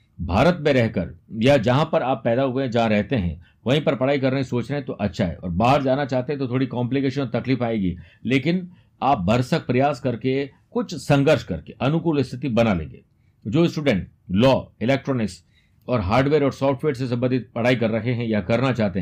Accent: native